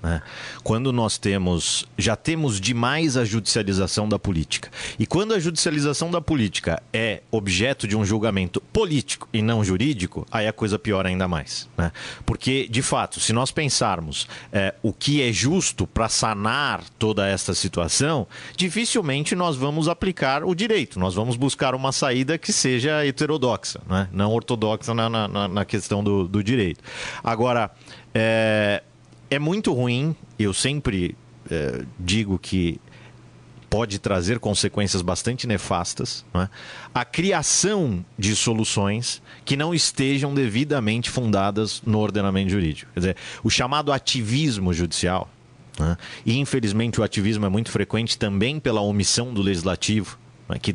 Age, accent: 40-59, Brazilian